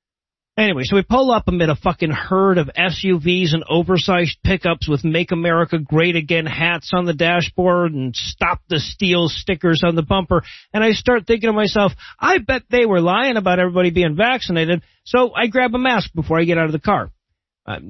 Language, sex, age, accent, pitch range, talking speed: English, male, 40-59, American, 155-205 Hz, 200 wpm